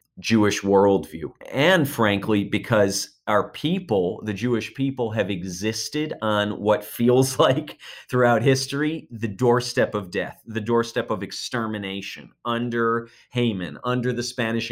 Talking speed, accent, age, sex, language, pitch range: 125 wpm, American, 30-49, male, English, 100-120 Hz